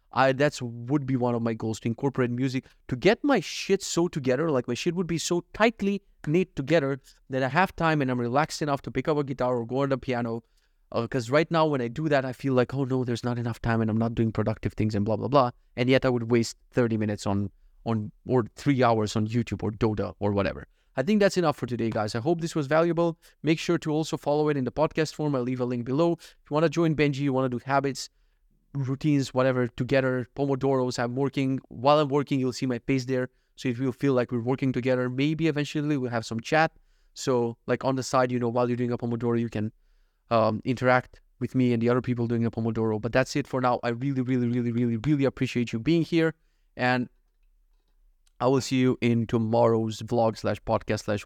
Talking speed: 240 wpm